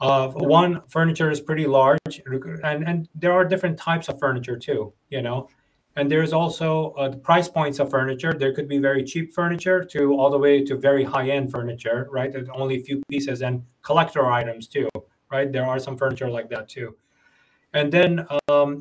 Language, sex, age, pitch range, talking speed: English, male, 30-49, 135-170 Hz, 190 wpm